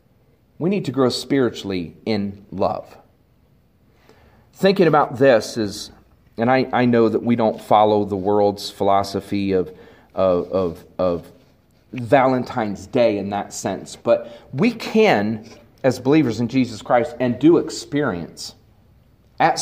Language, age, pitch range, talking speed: English, 40-59, 115-165 Hz, 130 wpm